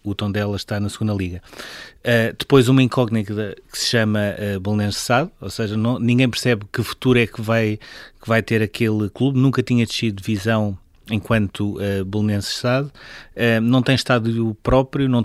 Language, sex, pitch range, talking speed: Portuguese, male, 110-125 Hz, 185 wpm